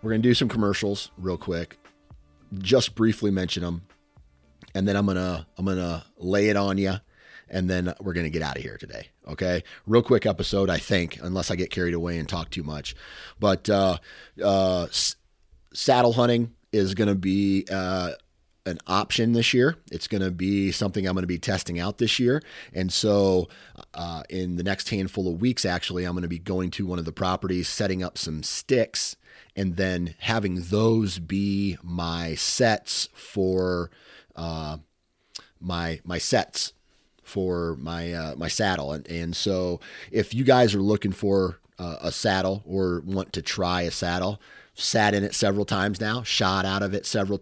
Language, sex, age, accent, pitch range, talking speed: English, male, 30-49, American, 85-105 Hz, 175 wpm